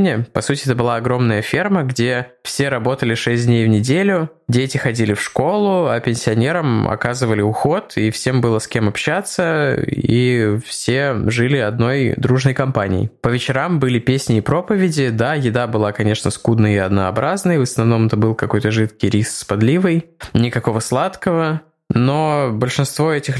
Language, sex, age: Russian, male, 20-39